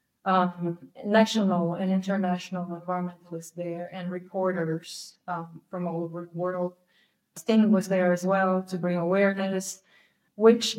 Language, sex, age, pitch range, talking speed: English, female, 30-49, 175-200 Hz, 130 wpm